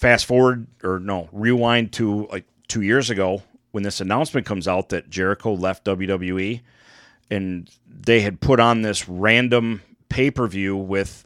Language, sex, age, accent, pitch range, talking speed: English, male, 40-59, American, 100-120 Hz, 150 wpm